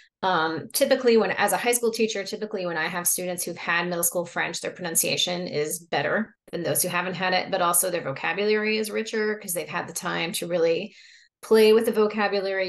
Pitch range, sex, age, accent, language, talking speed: 175-230 Hz, female, 30-49, American, English, 215 wpm